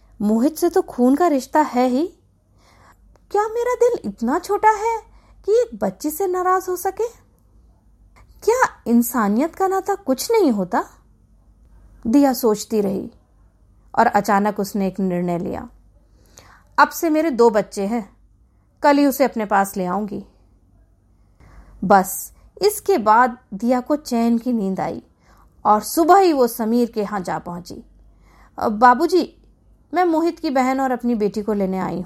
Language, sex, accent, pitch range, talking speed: Hindi, female, native, 200-300 Hz, 150 wpm